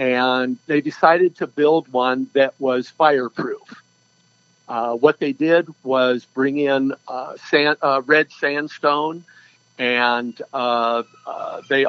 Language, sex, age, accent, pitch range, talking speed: English, male, 50-69, American, 125-155 Hz, 125 wpm